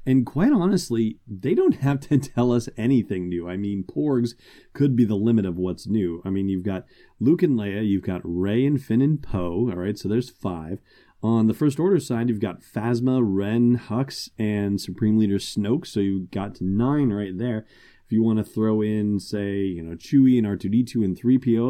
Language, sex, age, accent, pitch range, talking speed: English, male, 30-49, American, 100-120 Hz, 205 wpm